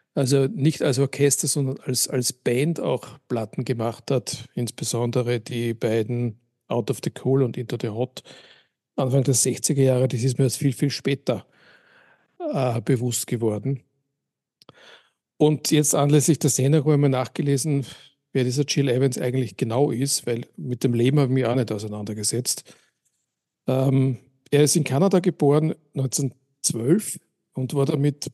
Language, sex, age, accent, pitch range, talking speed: German, male, 50-69, Austrian, 120-140 Hz, 150 wpm